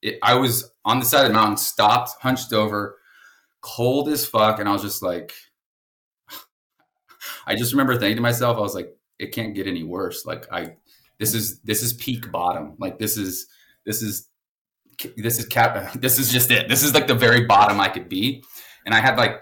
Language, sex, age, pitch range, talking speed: English, male, 20-39, 100-120 Hz, 205 wpm